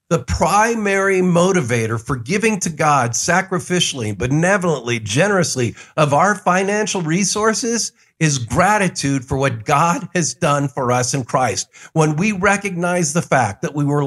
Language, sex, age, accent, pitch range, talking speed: English, male, 50-69, American, 140-195 Hz, 140 wpm